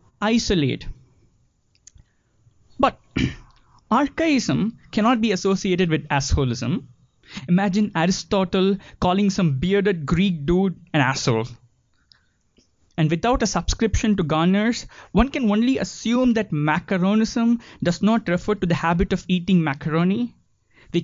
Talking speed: 110 wpm